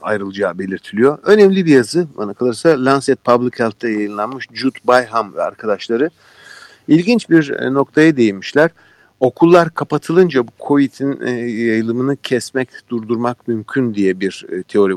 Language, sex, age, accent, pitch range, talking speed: Turkish, male, 50-69, native, 115-150 Hz, 120 wpm